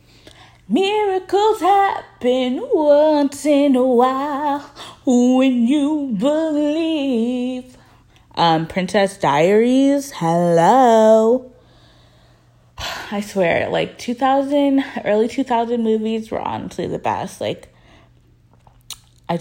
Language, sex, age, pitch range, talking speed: English, female, 20-39, 175-250 Hz, 80 wpm